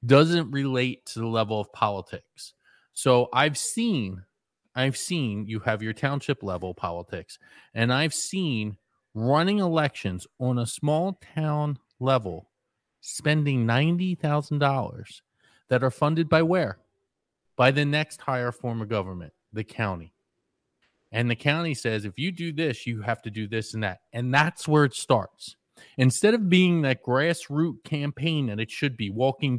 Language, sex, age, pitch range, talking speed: English, male, 30-49, 115-160 Hz, 155 wpm